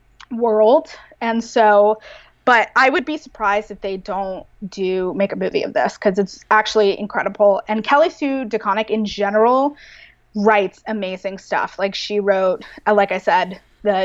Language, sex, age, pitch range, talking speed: English, female, 20-39, 195-230 Hz, 160 wpm